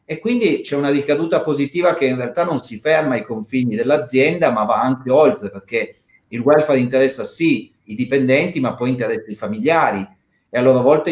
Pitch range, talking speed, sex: 135-175 Hz, 190 wpm, male